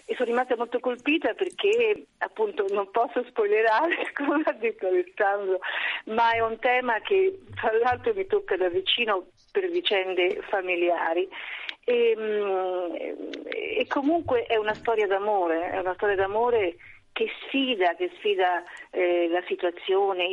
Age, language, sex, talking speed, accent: 40-59, Italian, female, 140 wpm, native